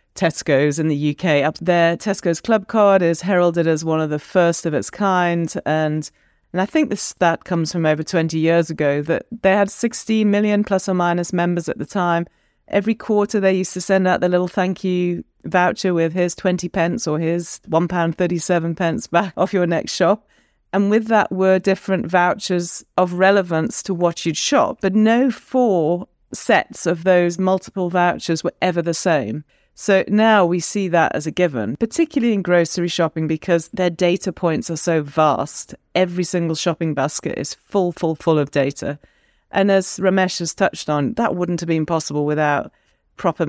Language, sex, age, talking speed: English, female, 40-59, 190 wpm